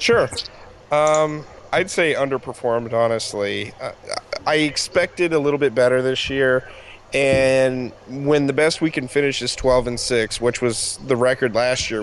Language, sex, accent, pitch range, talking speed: English, male, American, 120-140 Hz, 160 wpm